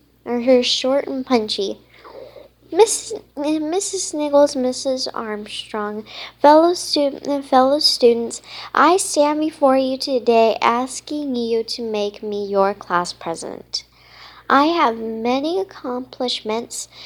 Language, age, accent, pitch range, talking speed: English, 10-29, American, 225-290 Hz, 115 wpm